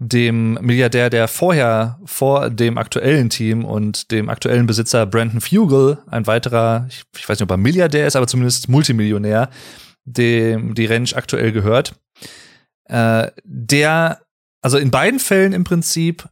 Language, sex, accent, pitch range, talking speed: German, male, German, 115-150 Hz, 140 wpm